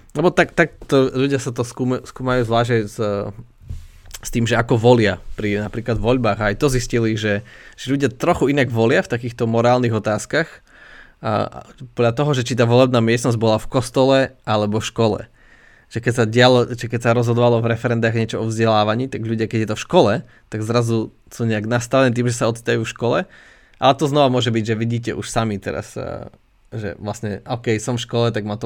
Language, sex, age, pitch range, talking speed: Slovak, male, 20-39, 110-125 Hz, 195 wpm